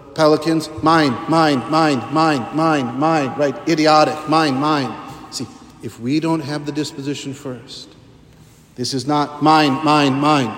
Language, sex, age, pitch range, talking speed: English, male, 50-69, 130-155 Hz, 140 wpm